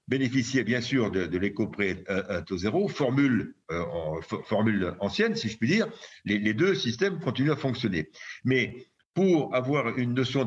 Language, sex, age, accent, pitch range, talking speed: French, male, 50-69, French, 105-140 Hz, 185 wpm